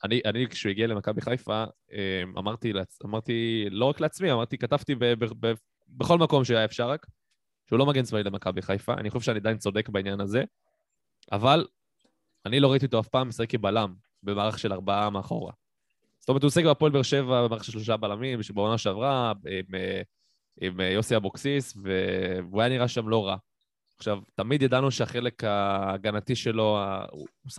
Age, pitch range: 20-39, 100-120 Hz